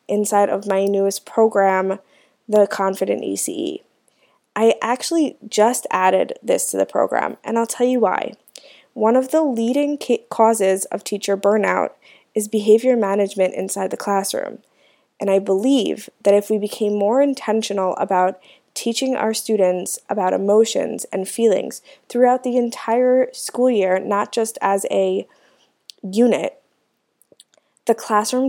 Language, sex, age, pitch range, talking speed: English, female, 20-39, 195-235 Hz, 135 wpm